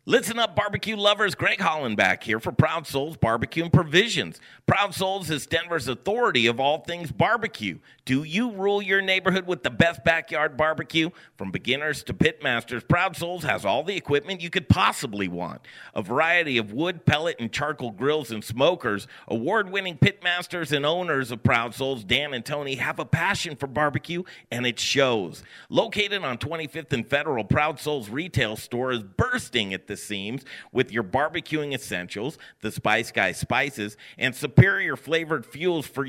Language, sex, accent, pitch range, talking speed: English, male, American, 125-170 Hz, 170 wpm